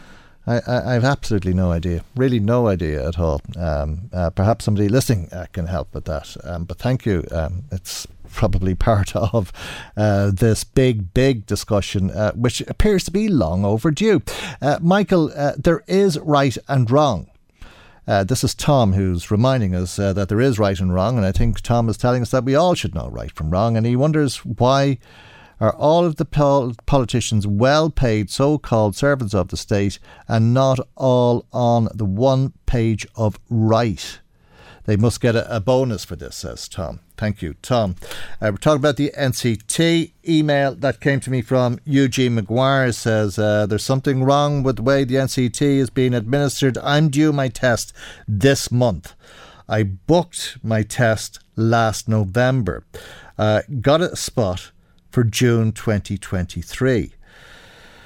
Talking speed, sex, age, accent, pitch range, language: 170 wpm, male, 50-69, Irish, 100-135 Hz, English